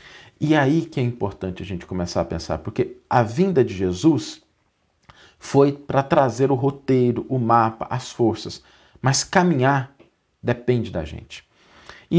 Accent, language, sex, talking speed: Brazilian, Portuguese, male, 150 wpm